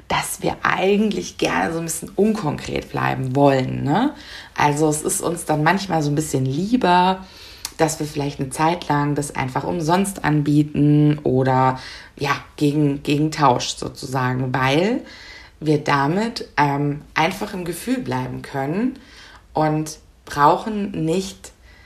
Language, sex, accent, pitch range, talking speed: German, female, German, 140-170 Hz, 135 wpm